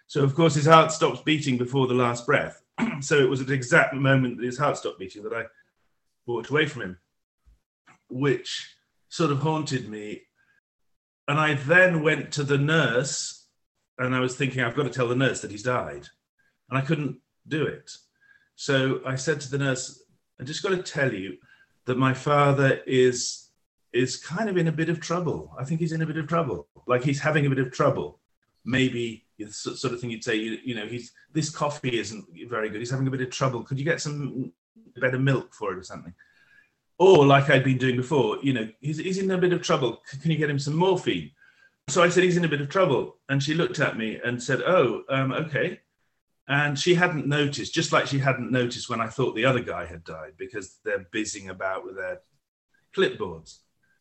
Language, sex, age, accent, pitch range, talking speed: English, male, 40-59, British, 130-165 Hz, 215 wpm